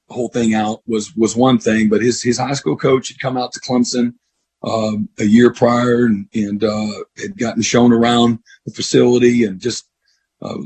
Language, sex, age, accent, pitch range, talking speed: English, male, 40-59, American, 115-130 Hz, 190 wpm